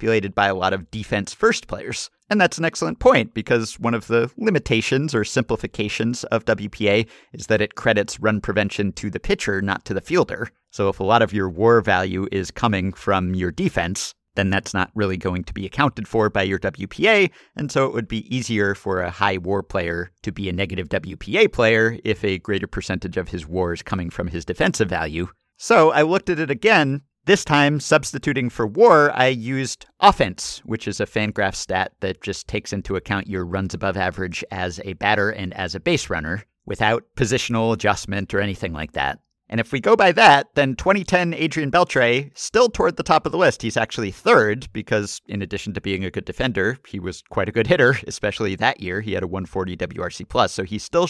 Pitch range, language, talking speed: 95-120 Hz, English, 210 wpm